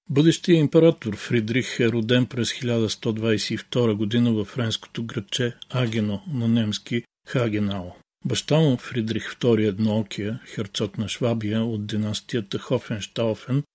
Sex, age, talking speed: male, 50-69, 120 wpm